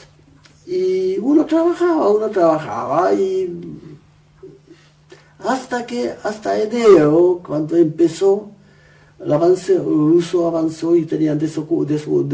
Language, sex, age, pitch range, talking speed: English, male, 60-79, 155-260 Hz, 100 wpm